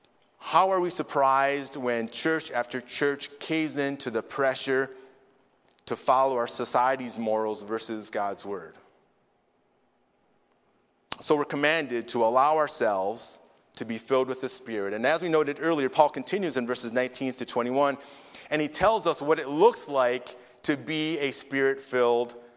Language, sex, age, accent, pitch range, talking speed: English, male, 30-49, American, 120-145 Hz, 150 wpm